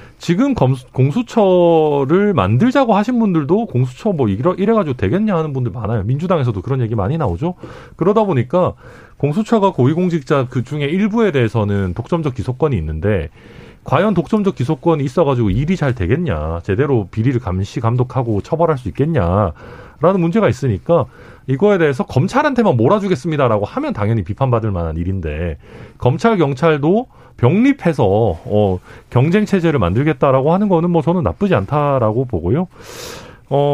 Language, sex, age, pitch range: Korean, male, 40-59, 110-170 Hz